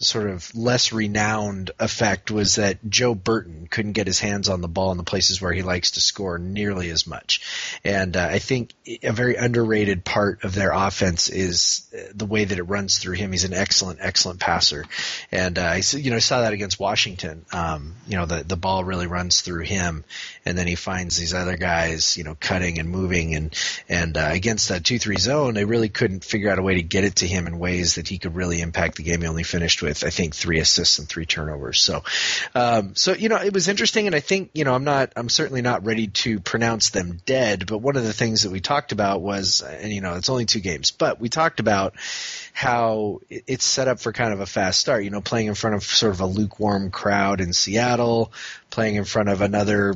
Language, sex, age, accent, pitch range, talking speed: English, male, 30-49, American, 90-115 Hz, 235 wpm